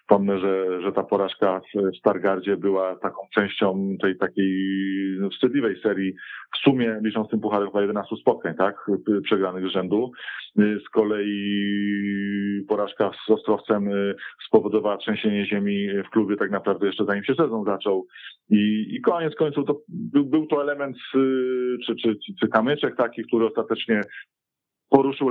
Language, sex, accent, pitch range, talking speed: Polish, male, native, 95-115 Hz, 145 wpm